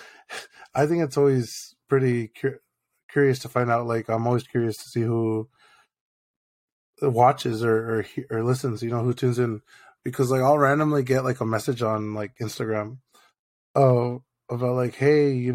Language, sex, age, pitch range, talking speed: English, male, 20-39, 115-135 Hz, 165 wpm